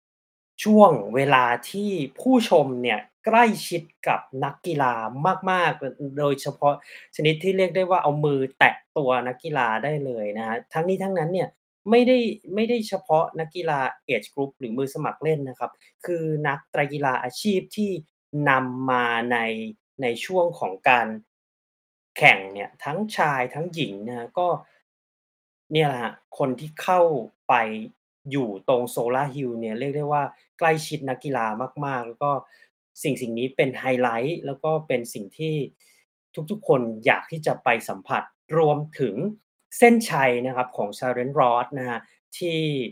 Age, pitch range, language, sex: 20-39, 125-165 Hz, Thai, male